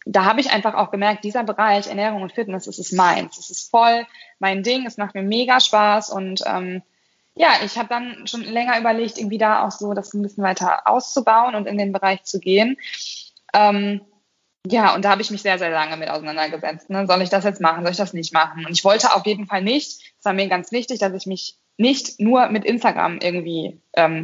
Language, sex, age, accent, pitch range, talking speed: German, female, 20-39, German, 185-215 Hz, 225 wpm